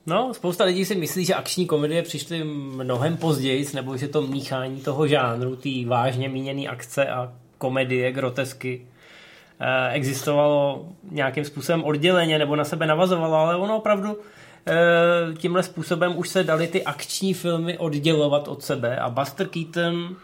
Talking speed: 140 wpm